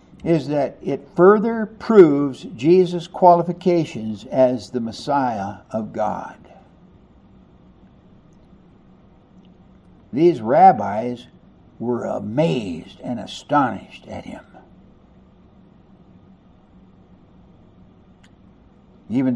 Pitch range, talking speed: 130-195 Hz, 65 wpm